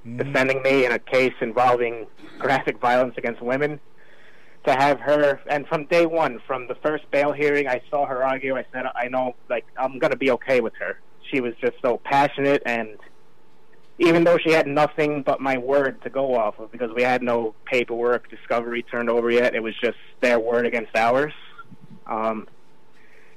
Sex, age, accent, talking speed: male, 30-49, American, 185 wpm